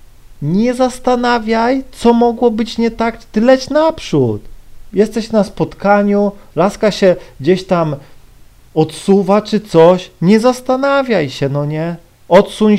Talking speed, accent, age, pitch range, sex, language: 120 wpm, native, 40-59, 170-225 Hz, male, Polish